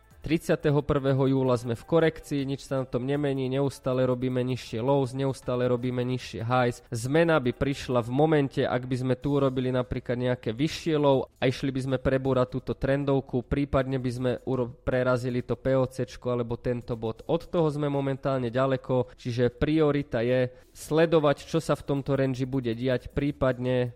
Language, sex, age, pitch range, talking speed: Slovak, male, 20-39, 125-145 Hz, 160 wpm